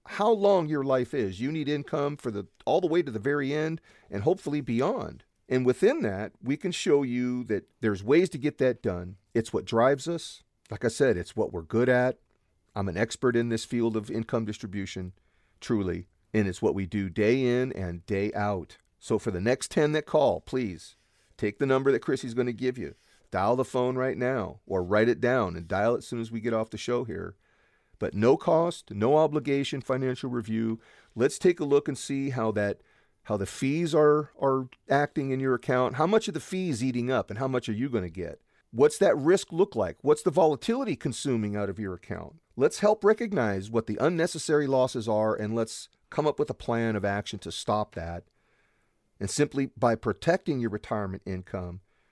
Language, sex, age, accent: English, male, 40-59, American